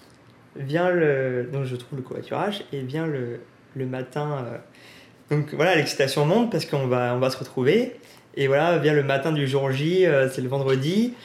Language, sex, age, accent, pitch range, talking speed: English, male, 20-39, French, 135-175 Hz, 190 wpm